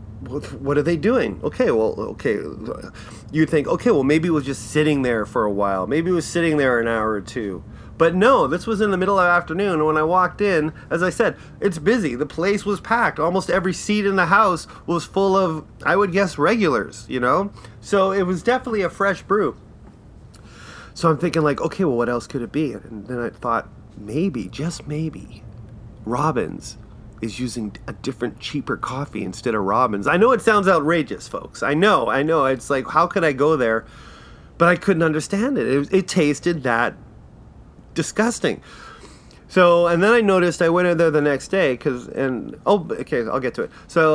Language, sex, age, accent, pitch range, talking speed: English, male, 30-49, American, 135-190 Hz, 205 wpm